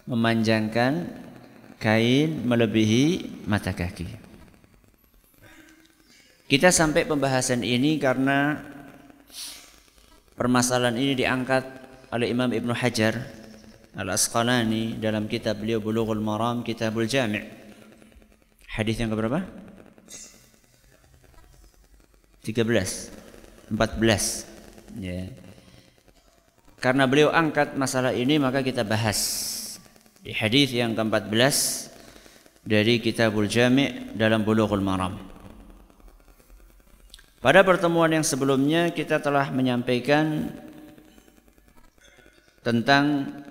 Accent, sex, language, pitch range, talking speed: native, male, Indonesian, 110-140 Hz, 75 wpm